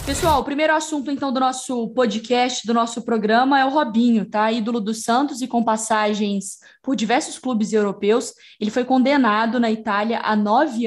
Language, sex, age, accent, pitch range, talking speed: Portuguese, female, 10-29, Brazilian, 220-270 Hz, 165 wpm